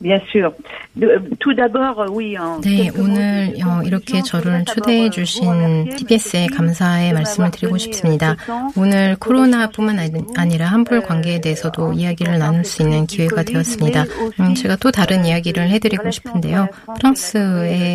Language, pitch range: Korean, 165-210 Hz